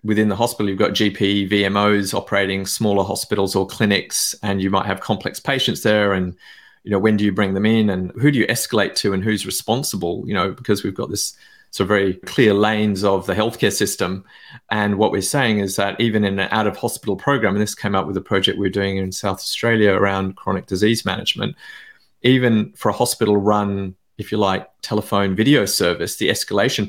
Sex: male